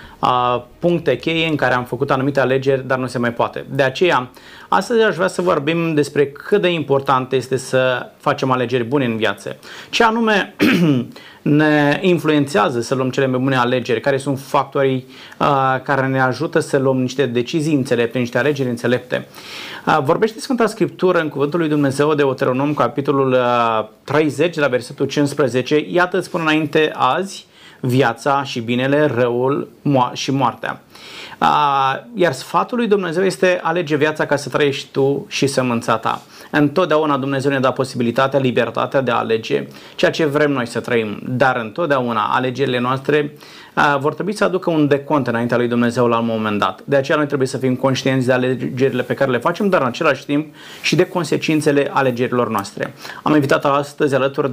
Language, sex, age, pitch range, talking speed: Romanian, male, 30-49, 130-155 Hz, 165 wpm